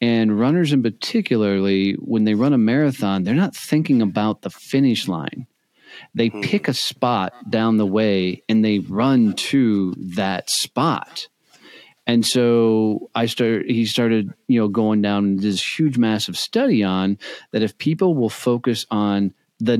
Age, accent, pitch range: 40-59, American, 95-115 Hz